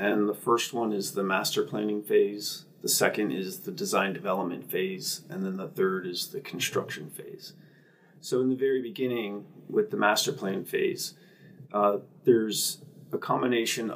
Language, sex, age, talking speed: English, male, 30-49, 165 wpm